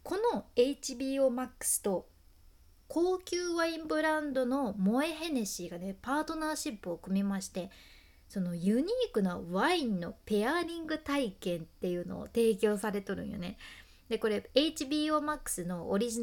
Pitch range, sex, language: 205-300 Hz, female, Japanese